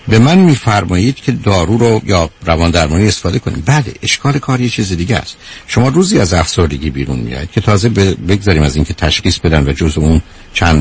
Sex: male